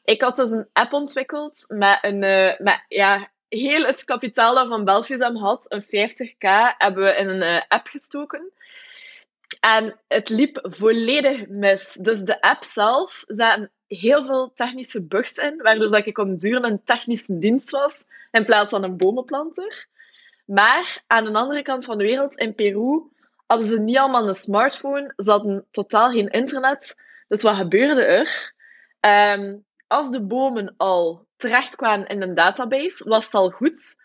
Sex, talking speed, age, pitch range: female, 160 wpm, 20-39, 205-265 Hz